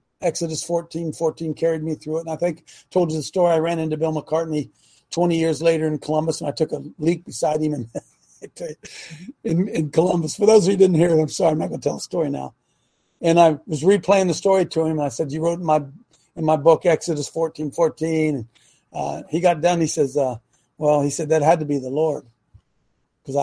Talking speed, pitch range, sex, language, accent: 235 wpm, 155-220 Hz, male, English, American